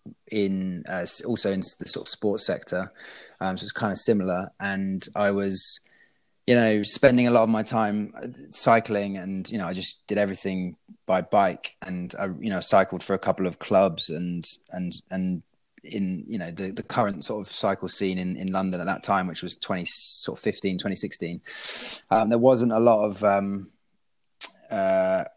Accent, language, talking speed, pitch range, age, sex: British, English, 190 wpm, 95-115 Hz, 20-39, male